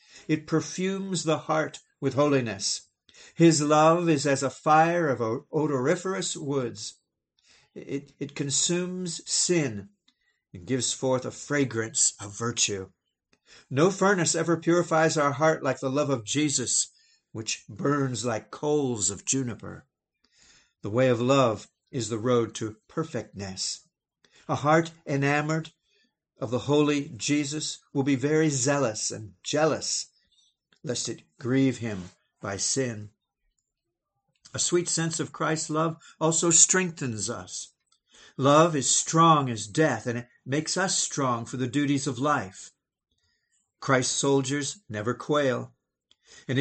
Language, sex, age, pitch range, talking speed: English, male, 50-69, 125-160 Hz, 130 wpm